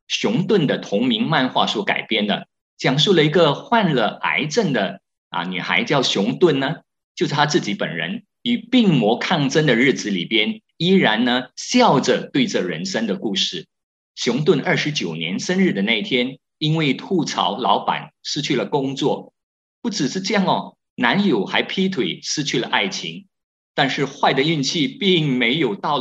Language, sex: Chinese, male